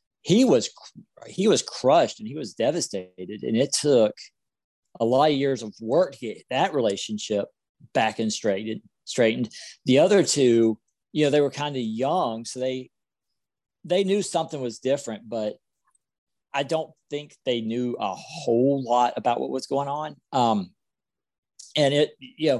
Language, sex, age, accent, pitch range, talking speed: English, male, 40-59, American, 115-145 Hz, 160 wpm